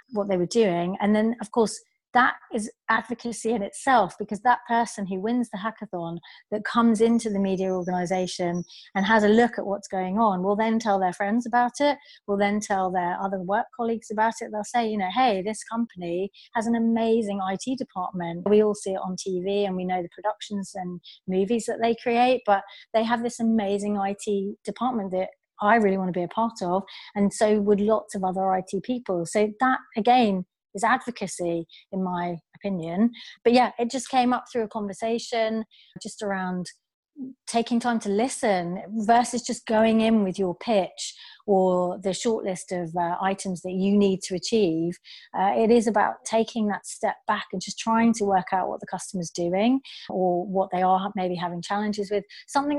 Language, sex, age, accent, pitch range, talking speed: English, female, 30-49, British, 185-230 Hz, 195 wpm